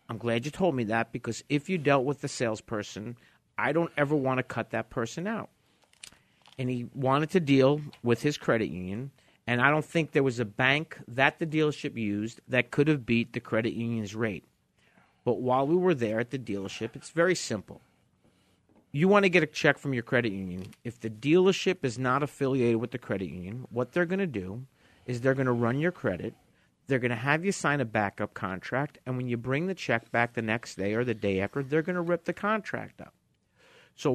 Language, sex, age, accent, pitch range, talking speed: English, male, 50-69, American, 115-145 Hz, 220 wpm